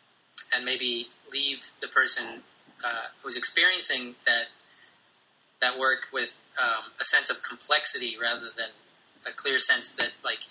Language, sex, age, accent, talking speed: English, male, 30-49, American, 135 wpm